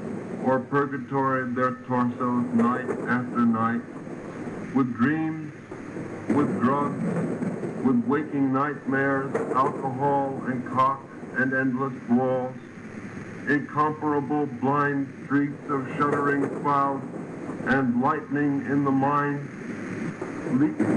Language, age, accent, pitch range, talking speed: English, 50-69, American, 135-155 Hz, 95 wpm